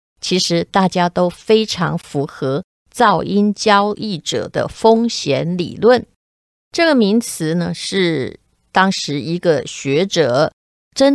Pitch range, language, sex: 170-220 Hz, Chinese, female